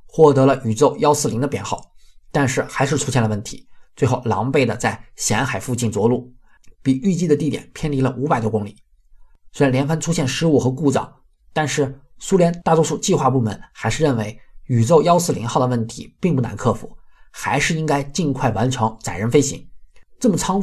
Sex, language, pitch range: male, Chinese, 115-150 Hz